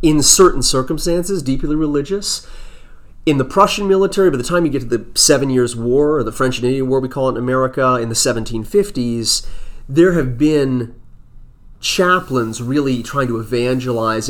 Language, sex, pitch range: English, male, 115-170 Hz